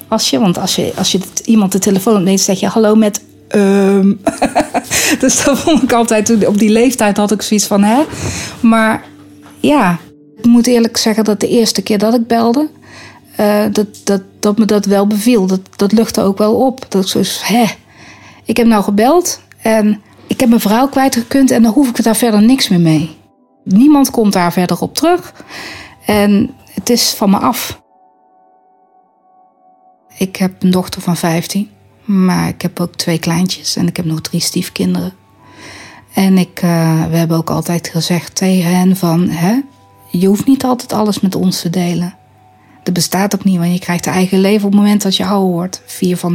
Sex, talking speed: female, 195 wpm